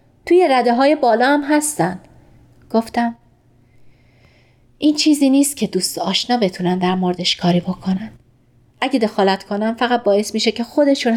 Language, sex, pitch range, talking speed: Persian, female, 185-270 Hz, 140 wpm